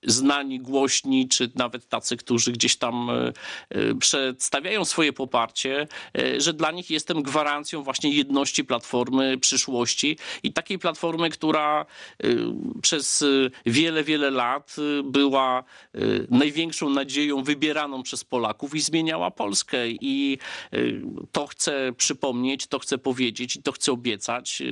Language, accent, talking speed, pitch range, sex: Polish, native, 115 wpm, 125-155 Hz, male